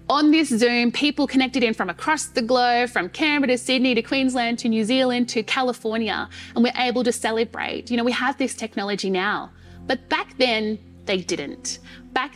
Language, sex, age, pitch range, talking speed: English, female, 30-49, 210-255 Hz, 190 wpm